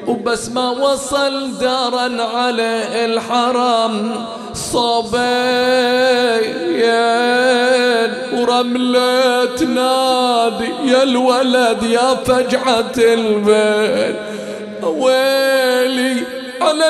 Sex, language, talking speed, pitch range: male, English, 55 wpm, 225-260 Hz